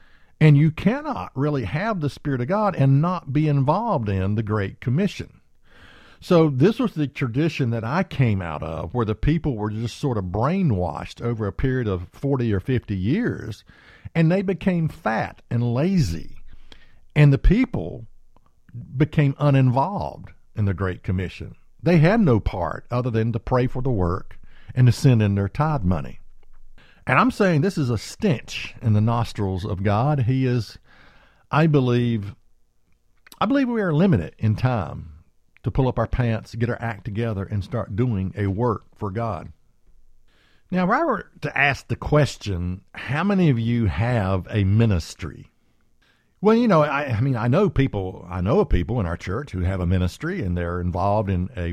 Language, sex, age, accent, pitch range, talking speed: English, male, 50-69, American, 100-150 Hz, 180 wpm